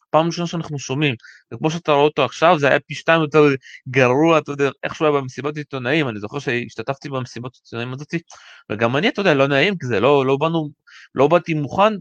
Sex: male